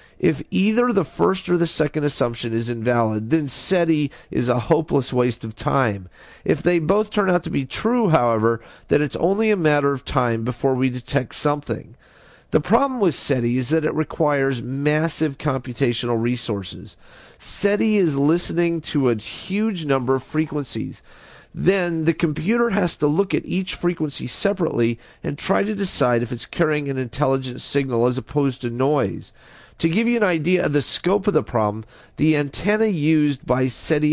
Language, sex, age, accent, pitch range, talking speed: English, male, 40-59, American, 125-165 Hz, 170 wpm